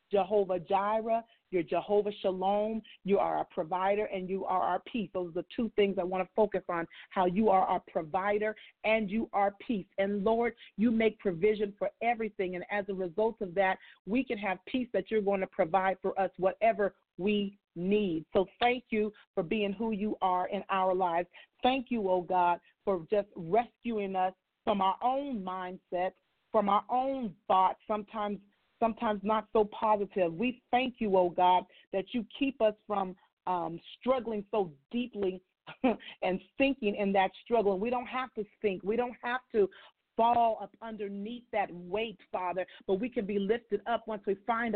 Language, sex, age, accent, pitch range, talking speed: English, female, 40-59, American, 190-230 Hz, 180 wpm